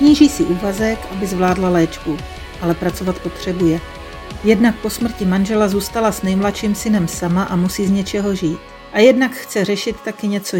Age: 40-59